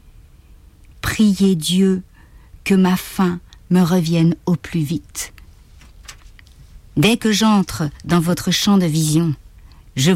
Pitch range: 140-190 Hz